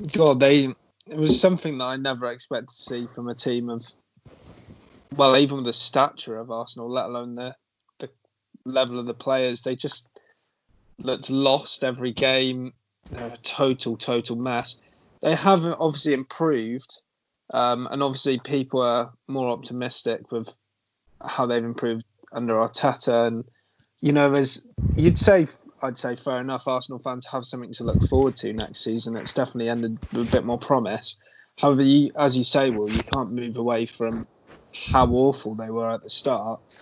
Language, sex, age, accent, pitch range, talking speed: English, male, 20-39, British, 120-135 Hz, 170 wpm